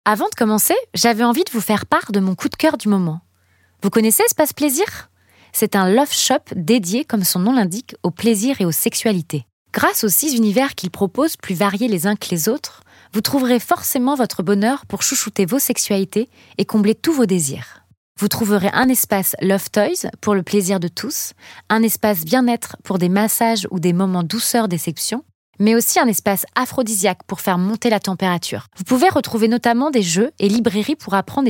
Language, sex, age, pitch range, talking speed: French, female, 20-39, 190-240 Hz, 195 wpm